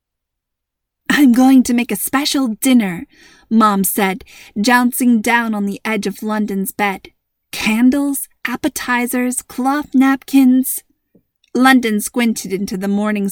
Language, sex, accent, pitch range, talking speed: English, female, American, 210-280 Hz, 115 wpm